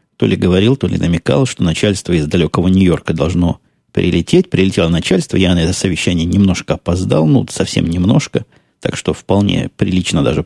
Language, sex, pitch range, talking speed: Russian, male, 90-105 Hz, 165 wpm